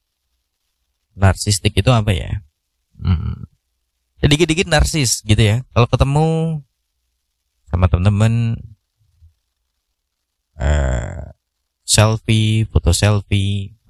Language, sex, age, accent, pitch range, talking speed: Indonesian, male, 20-39, native, 75-110 Hz, 80 wpm